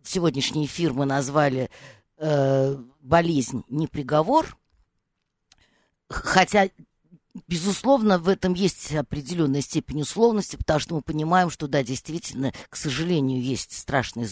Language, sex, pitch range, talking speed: Russian, female, 135-195 Hz, 110 wpm